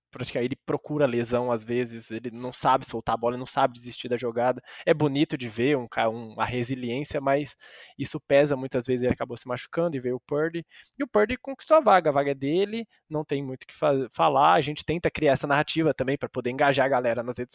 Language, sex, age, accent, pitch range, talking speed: Portuguese, male, 20-39, Brazilian, 125-155 Hz, 240 wpm